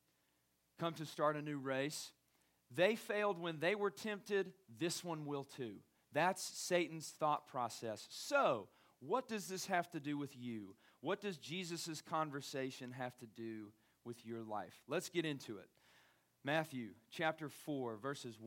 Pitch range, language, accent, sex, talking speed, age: 135-195 Hz, English, American, male, 155 wpm, 40-59